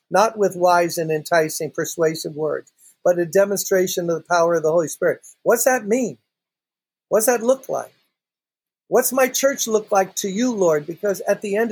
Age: 50-69